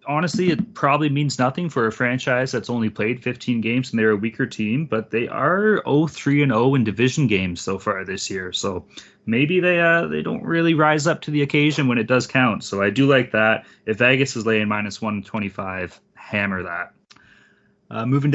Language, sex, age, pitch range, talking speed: English, male, 20-39, 110-145 Hz, 205 wpm